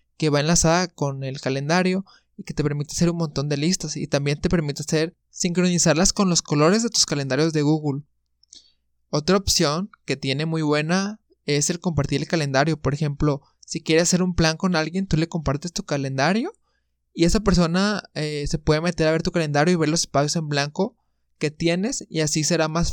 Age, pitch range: 20-39, 145-170 Hz